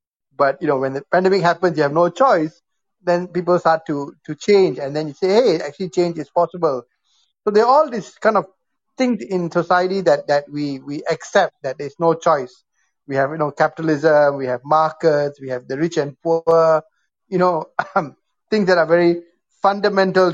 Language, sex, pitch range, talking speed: English, male, 145-180 Hz, 200 wpm